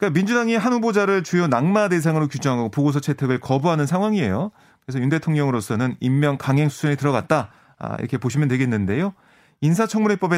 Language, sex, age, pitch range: Korean, male, 30-49, 125-170 Hz